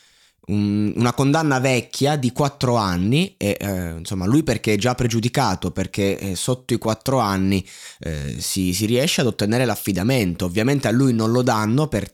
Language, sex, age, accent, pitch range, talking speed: Italian, male, 20-39, native, 95-130 Hz, 165 wpm